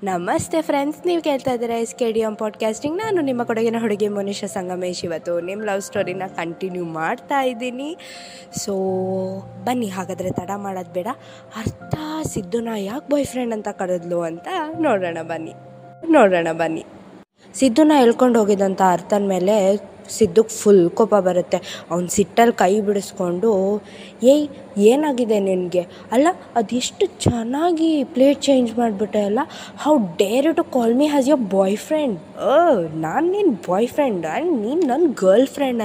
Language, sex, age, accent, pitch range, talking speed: Kannada, female, 20-39, native, 195-275 Hz, 140 wpm